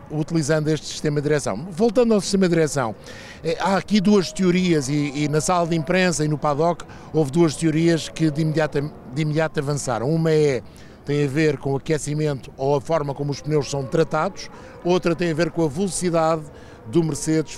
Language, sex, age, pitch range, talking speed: Portuguese, male, 50-69, 150-180 Hz, 195 wpm